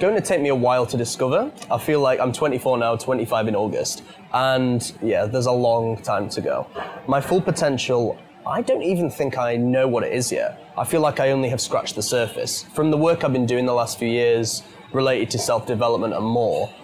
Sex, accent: male, British